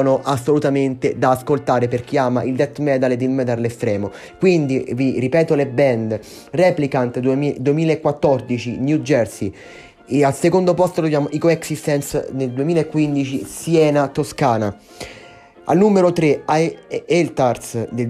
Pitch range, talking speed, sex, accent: 130-145 Hz, 135 wpm, male, native